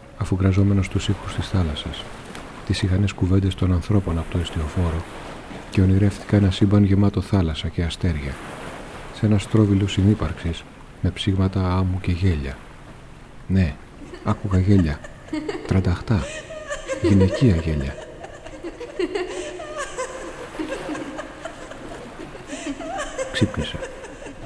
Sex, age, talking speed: male, 40-59, 95 wpm